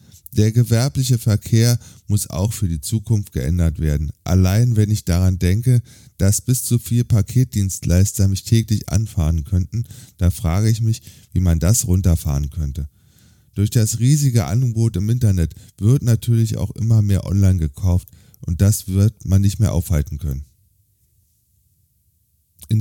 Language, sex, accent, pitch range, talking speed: German, male, German, 90-115 Hz, 145 wpm